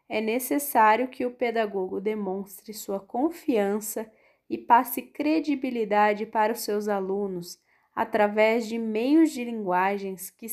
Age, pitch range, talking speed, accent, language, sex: 20-39, 200-260 Hz, 120 wpm, Brazilian, Portuguese, female